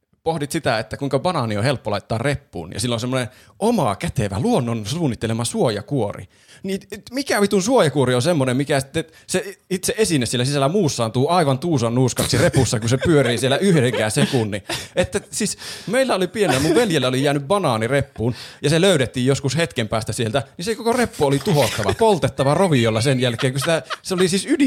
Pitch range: 115-175 Hz